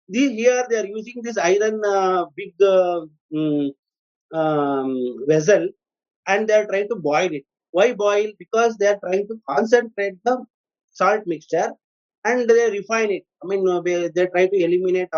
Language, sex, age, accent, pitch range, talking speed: English, male, 30-49, Indian, 170-215 Hz, 160 wpm